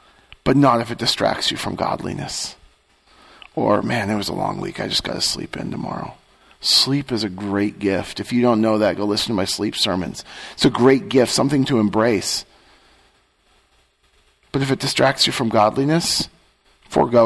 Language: English